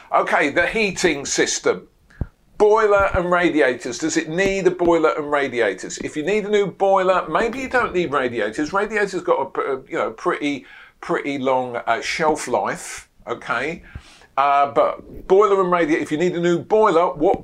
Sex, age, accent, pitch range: male, 50-69, British, 150-205 Hz